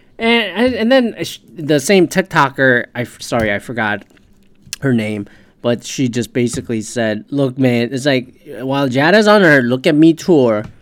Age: 20-39